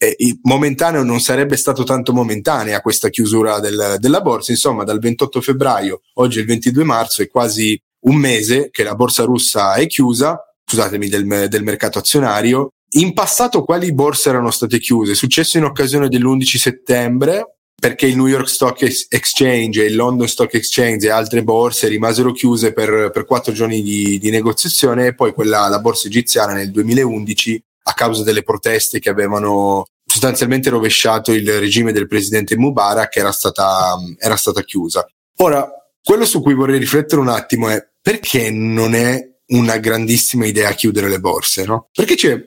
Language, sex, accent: Italian, male, native